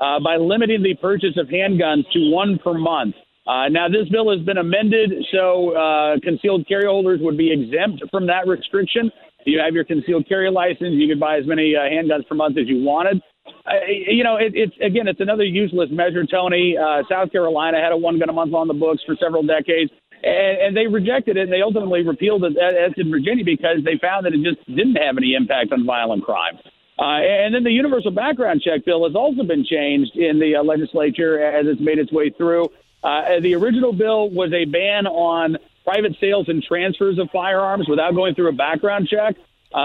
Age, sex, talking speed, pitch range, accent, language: 50-69, male, 215 wpm, 160-205 Hz, American, English